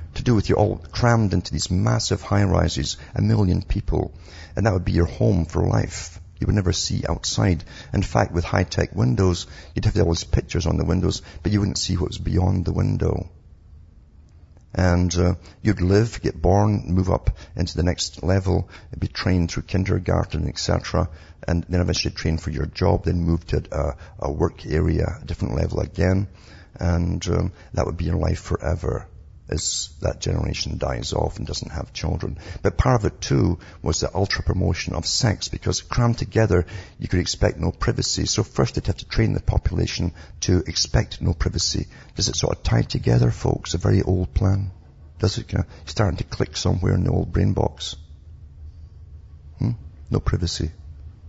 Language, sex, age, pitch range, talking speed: English, male, 50-69, 80-100 Hz, 185 wpm